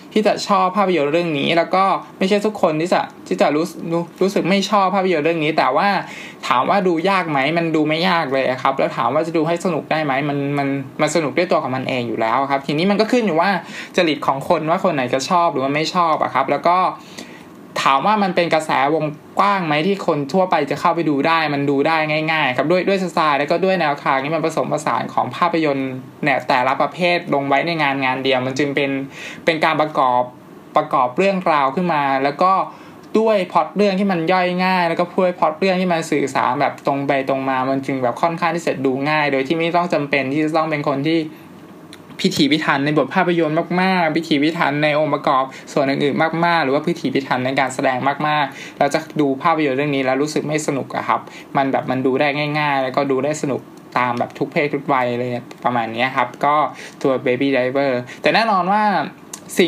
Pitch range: 140-175 Hz